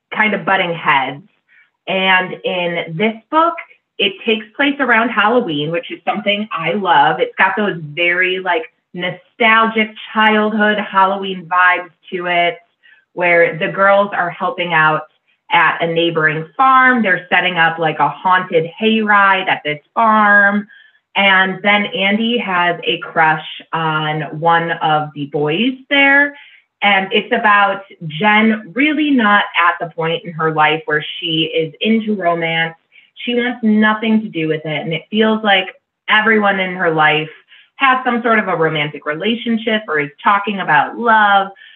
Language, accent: English, American